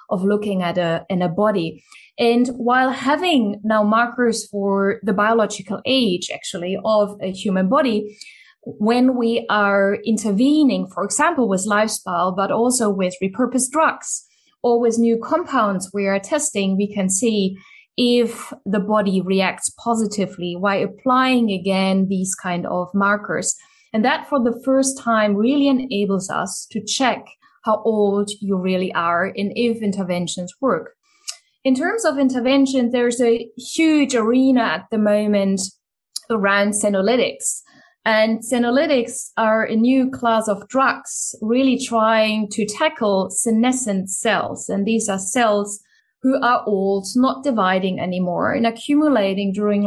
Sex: female